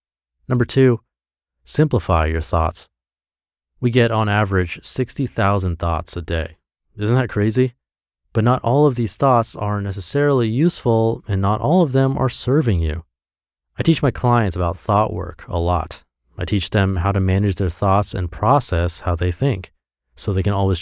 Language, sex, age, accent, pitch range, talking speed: English, male, 30-49, American, 85-125 Hz, 170 wpm